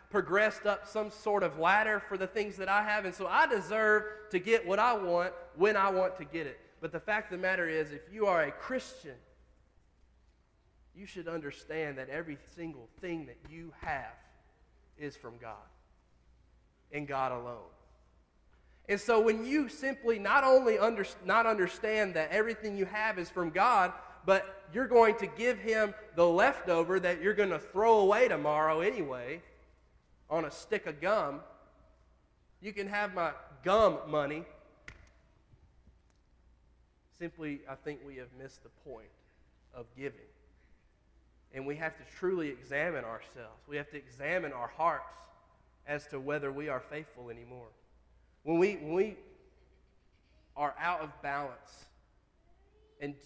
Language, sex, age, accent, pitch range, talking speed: English, male, 30-49, American, 130-205 Hz, 155 wpm